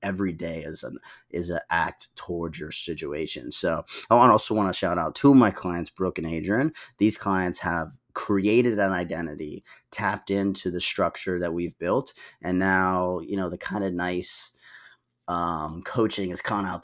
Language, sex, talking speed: English, male, 180 wpm